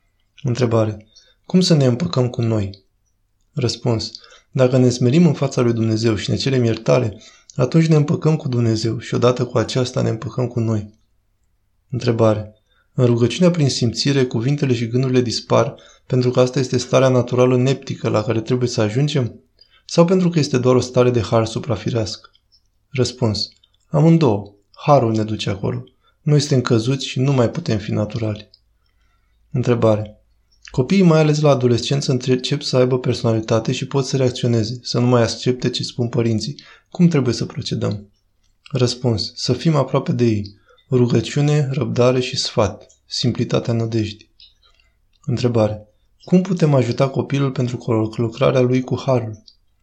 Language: Romanian